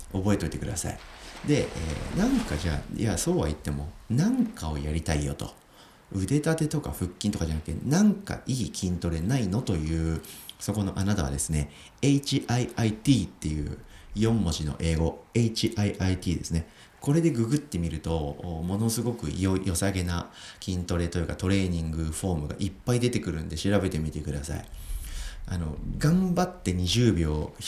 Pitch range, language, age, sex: 80-110 Hz, Japanese, 40-59, male